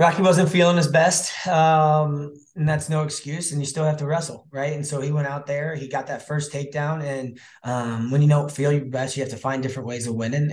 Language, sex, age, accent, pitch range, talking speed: English, male, 20-39, American, 110-140 Hz, 250 wpm